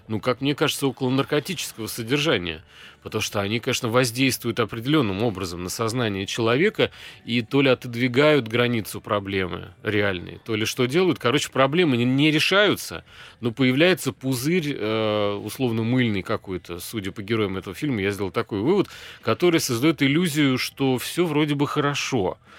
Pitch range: 110-135 Hz